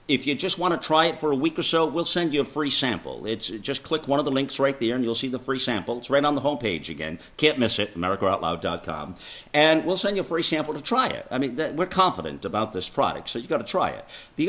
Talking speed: 280 wpm